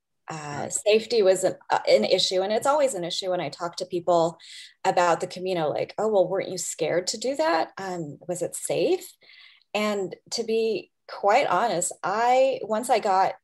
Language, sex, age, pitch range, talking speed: English, female, 20-39, 180-230 Hz, 190 wpm